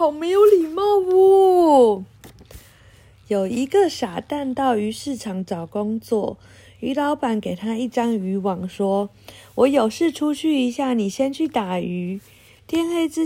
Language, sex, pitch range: Chinese, female, 190-265 Hz